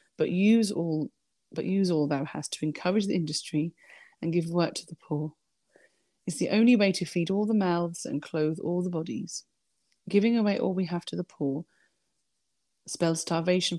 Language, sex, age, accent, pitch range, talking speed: English, female, 30-49, British, 165-210 Hz, 185 wpm